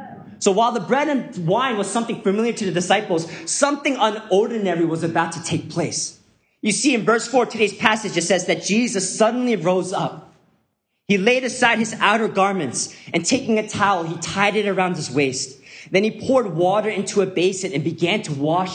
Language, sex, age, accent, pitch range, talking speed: English, male, 30-49, American, 160-215 Hz, 195 wpm